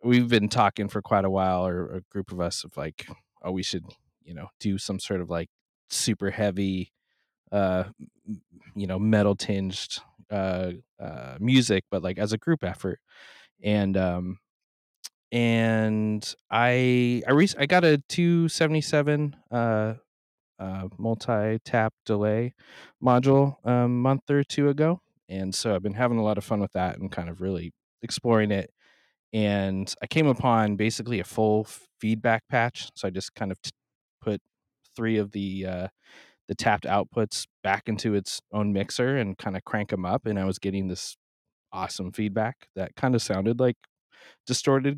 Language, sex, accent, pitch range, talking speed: English, male, American, 95-120 Hz, 170 wpm